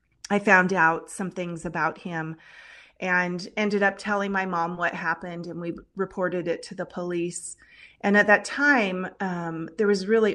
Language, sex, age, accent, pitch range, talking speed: English, female, 30-49, American, 170-205 Hz, 175 wpm